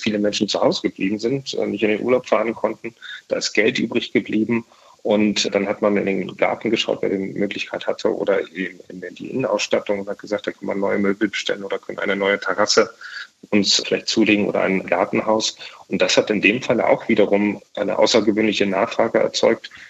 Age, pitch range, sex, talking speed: 40-59, 100-115 Hz, male, 195 wpm